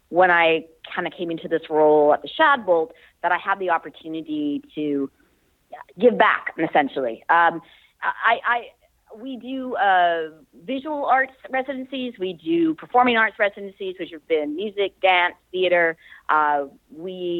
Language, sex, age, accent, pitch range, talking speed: English, female, 30-49, American, 160-200 Hz, 145 wpm